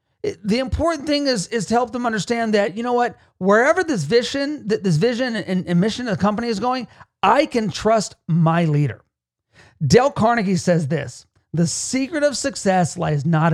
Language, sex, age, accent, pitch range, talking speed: English, male, 40-59, American, 160-235 Hz, 175 wpm